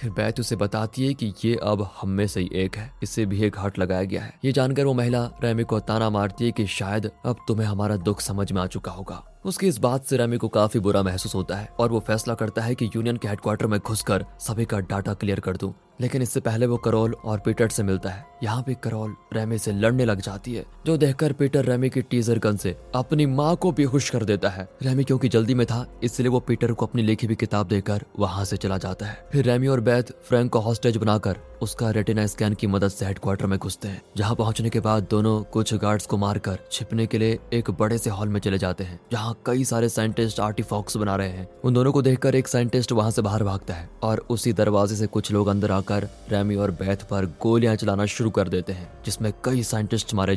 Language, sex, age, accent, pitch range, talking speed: Hindi, male, 20-39, native, 100-120 Hz, 240 wpm